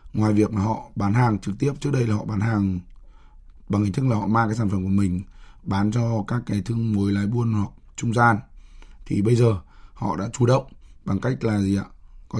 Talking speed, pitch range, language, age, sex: 235 wpm, 100-120 Hz, Vietnamese, 20-39, male